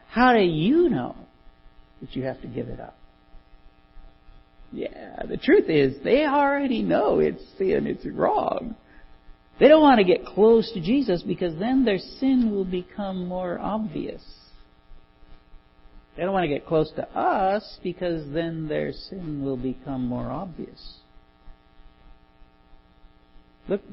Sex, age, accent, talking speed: male, 60-79, American, 140 wpm